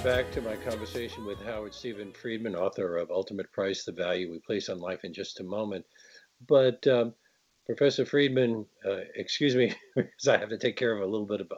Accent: American